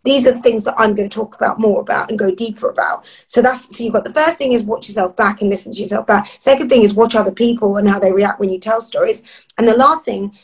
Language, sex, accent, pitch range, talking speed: English, female, British, 210-255 Hz, 295 wpm